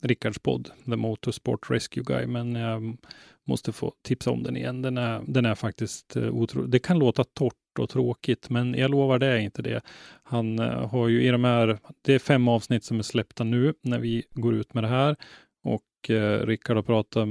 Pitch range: 110-125 Hz